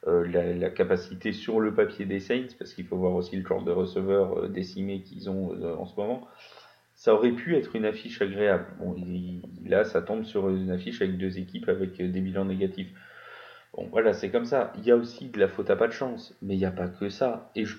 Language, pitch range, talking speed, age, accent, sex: French, 95-130 Hz, 245 wpm, 30-49, French, male